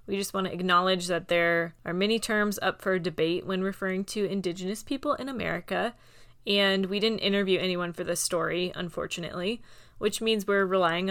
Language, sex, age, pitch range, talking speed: English, female, 20-39, 175-215 Hz, 180 wpm